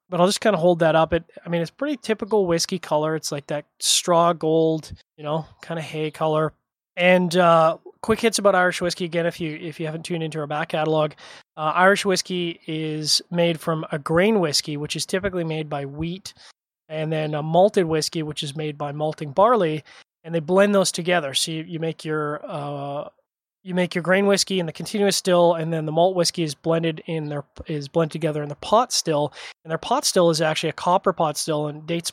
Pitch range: 155-180 Hz